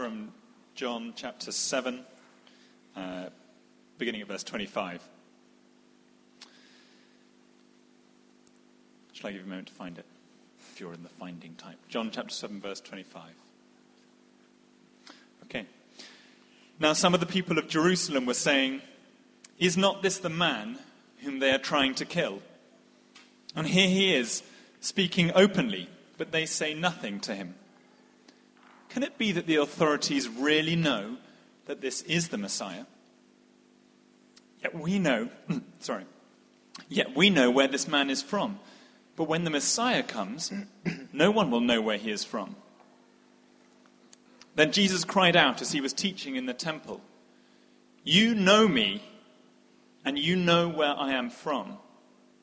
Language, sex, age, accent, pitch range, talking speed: English, male, 30-49, British, 140-215 Hz, 140 wpm